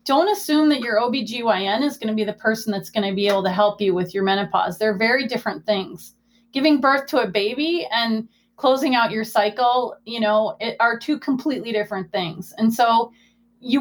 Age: 30-49